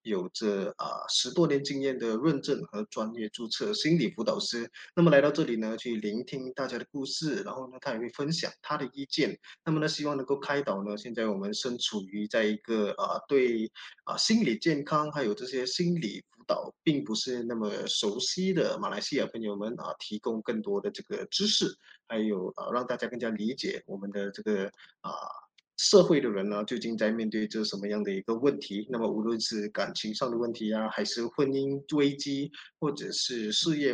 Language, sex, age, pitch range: Chinese, male, 20-39, 110-155 Hz